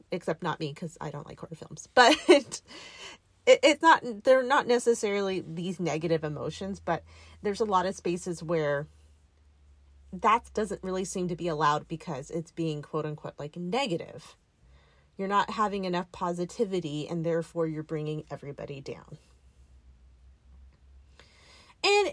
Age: 30-49